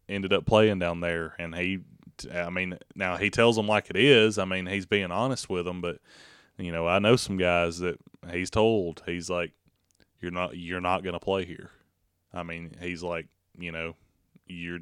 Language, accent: English, American